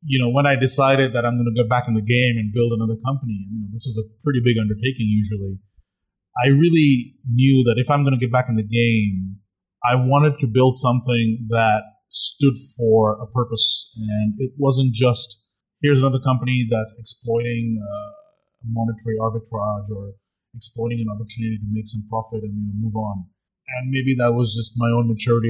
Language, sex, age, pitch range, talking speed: English, male, 30-49, 110-130 Hz, 200 wpm